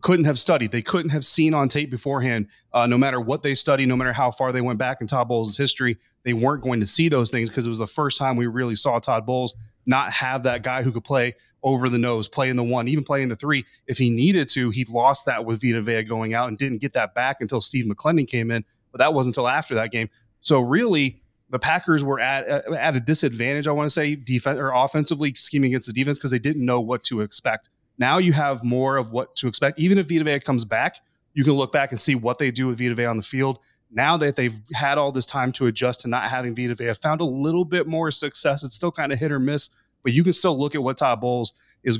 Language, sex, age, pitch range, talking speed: English, male, 30-49, 120-145 Hz, 265 wpm